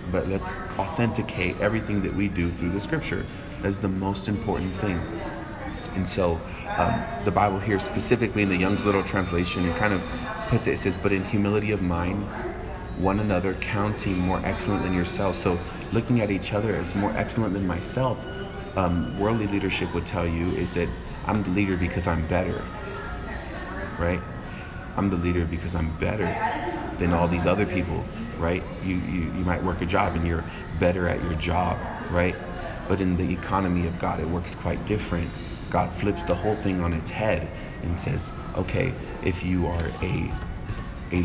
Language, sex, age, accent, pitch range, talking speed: English, male, 30-49, American, 85-100 Hz, 180 wpm